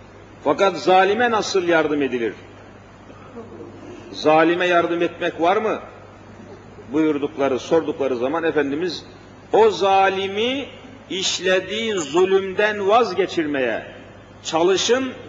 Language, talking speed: Turkish, 80 wpm